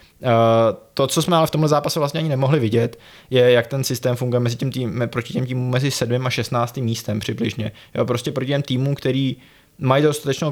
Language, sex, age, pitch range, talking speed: Czech, male, 20-39, 115-130 Hz, 190 wpm